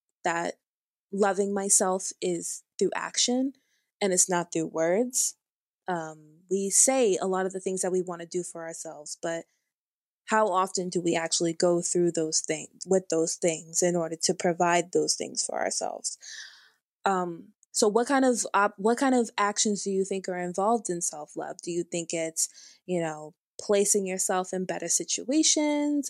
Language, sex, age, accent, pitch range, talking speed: English, female, 20-39, American, 170-220 Hz, 170 wpm